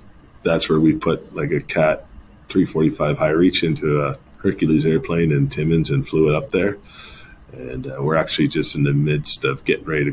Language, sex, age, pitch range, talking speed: English, male, 30-49, 75-105 Hz, 195 wpm